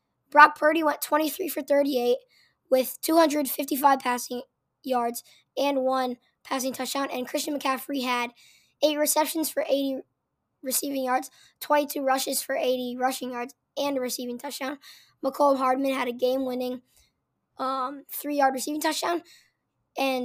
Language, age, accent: English, 10-29, American